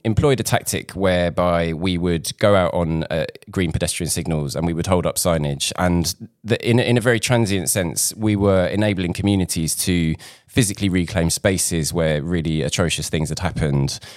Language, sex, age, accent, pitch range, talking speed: English, male, 20-39, British, 80-100 Hz, 175 wpm